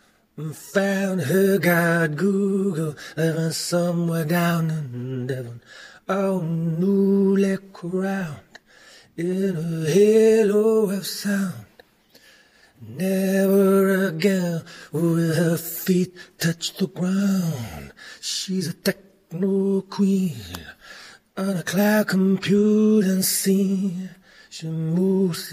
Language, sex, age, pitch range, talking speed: English, male, 30-49, 160-195 Hz, 85 wpm